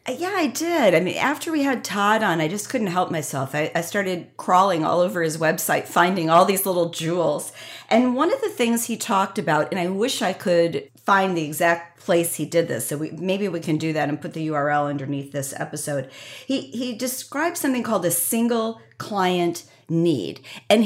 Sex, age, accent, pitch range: female, 40-59, American, 155-205 Hz